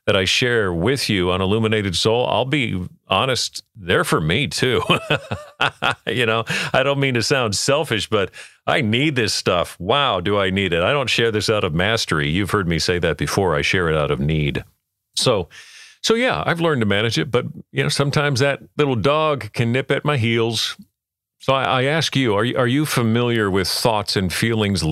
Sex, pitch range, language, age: male, 95-135 Hz, English, 50-69